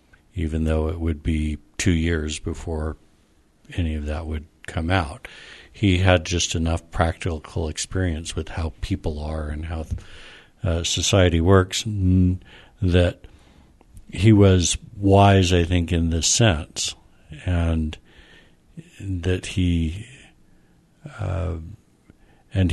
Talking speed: 110 wpm